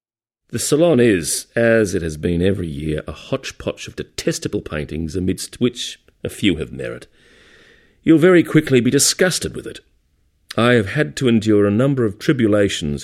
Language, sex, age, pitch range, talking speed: English, male, 40-59, 90-115 Hz, 165 wpm